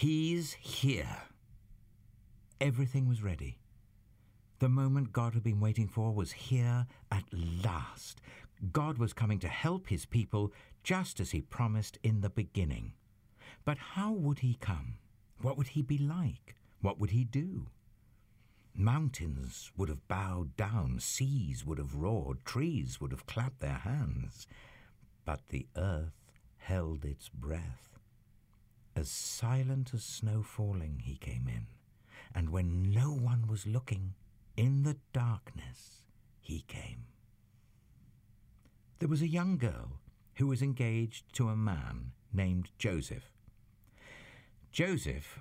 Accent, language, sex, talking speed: British, English, male, 130 wpm